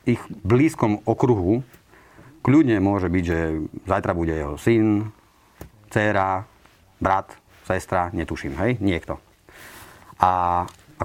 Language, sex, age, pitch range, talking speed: Slovak, male, 40-59, 90-110 Hz, 105 wpm